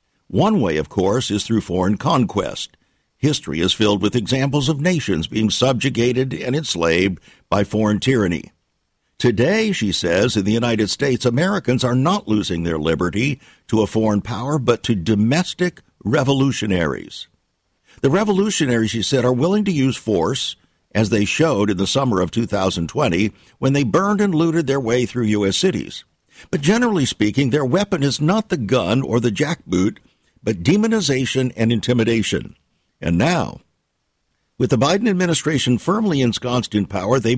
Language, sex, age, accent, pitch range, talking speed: English, male, 50-69, American, 110-150 Hz, 155 wpm